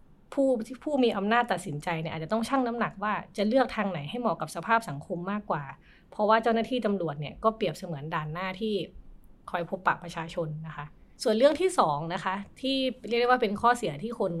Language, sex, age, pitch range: Thai, female, 20-39, 175-225 Hz